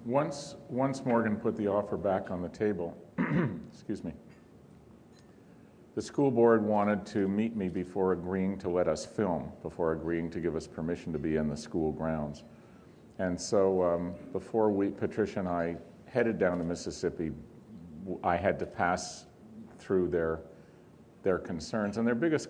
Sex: male